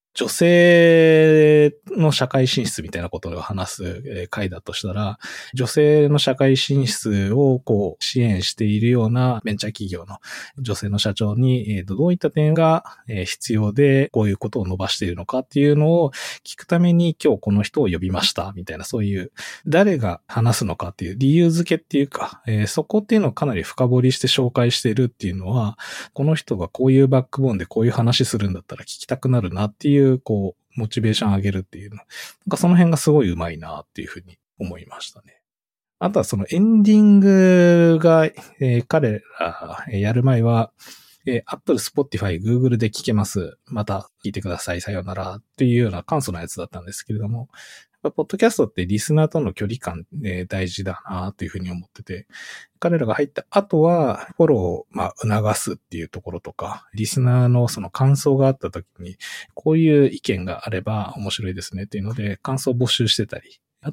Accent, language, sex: native, Japanese, male